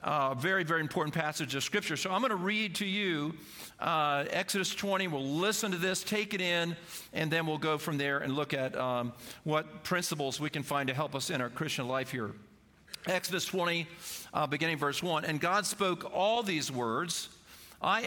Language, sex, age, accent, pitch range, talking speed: English, male, 50-69, American, 145-190 Hz, 200 wpm